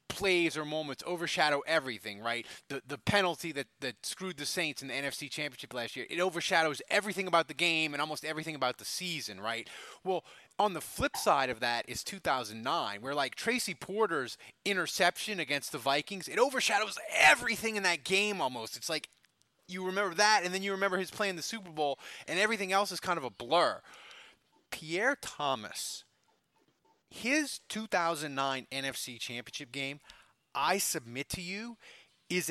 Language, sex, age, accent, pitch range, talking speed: English, male, 20-39, American, 140-185 Hz, 170 wpm